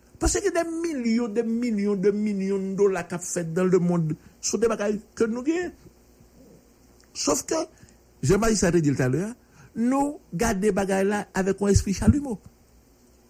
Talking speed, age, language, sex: 175 wpm, 60-79, English, male